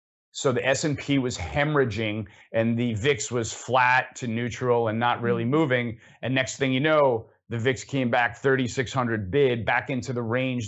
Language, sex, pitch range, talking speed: English, male, 115-140 Hz, 175 wpm